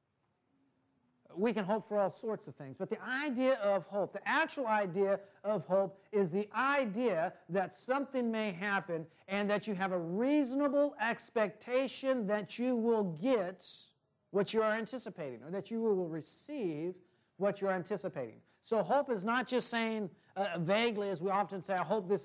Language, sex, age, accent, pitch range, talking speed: English, male, 40-59, American, 165-220 Hz, 175 wpm